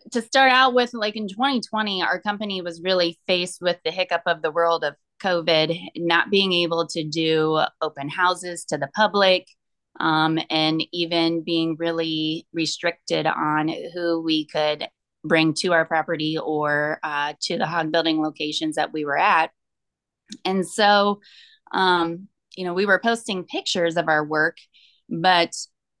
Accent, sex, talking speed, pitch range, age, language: American, female, 155 wpm, 160-185 Hz, 20-39, English